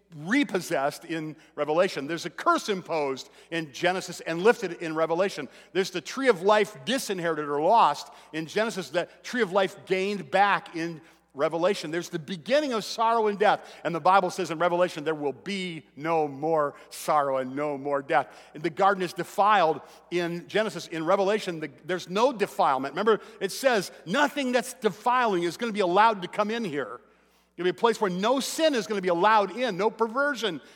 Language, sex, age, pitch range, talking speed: English, male, 50-69, 160-210 Hz, 185 wpm